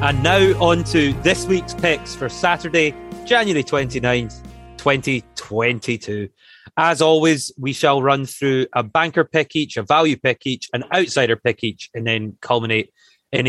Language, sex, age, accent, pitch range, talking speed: English, male, 30-49, British, 105-140 Hz, 150 wpm